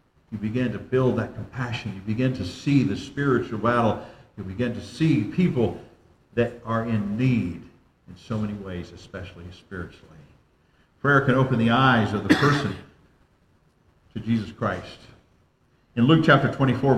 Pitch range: 105-140 Hz